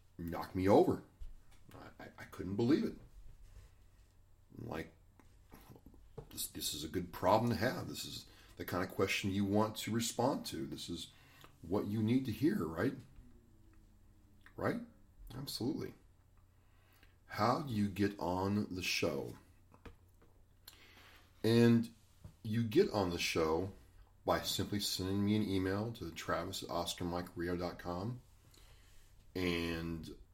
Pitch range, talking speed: 90-100 Hz, 125 wpm